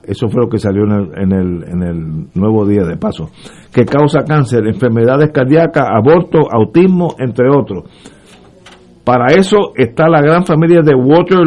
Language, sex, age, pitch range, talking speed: Spanish, male, 50-69, 120-155 Hz, 165 wpm